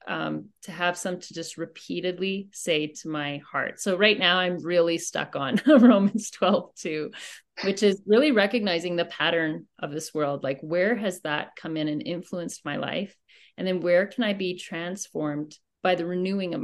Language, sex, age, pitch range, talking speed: English, female, 30-49, 165-200 Hz, 185 wpm